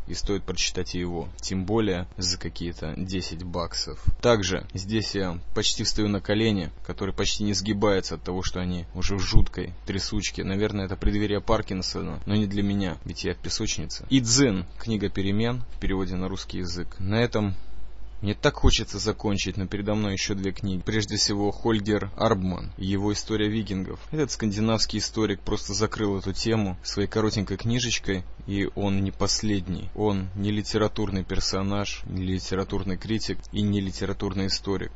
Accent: native